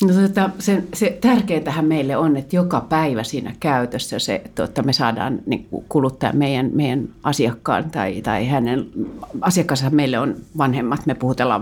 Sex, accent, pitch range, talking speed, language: female, native, 130-190 Hz, 140 wpm, Finnish